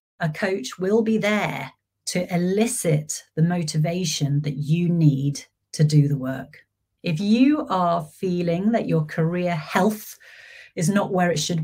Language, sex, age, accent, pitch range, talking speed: English, female, 30-49, British, 155-185 Hz, 150 wpm